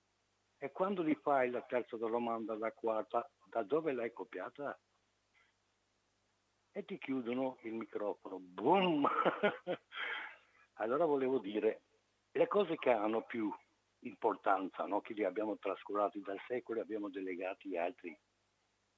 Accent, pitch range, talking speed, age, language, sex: native, 100-120 Hz, 125 wpm, 60-79, Italian, male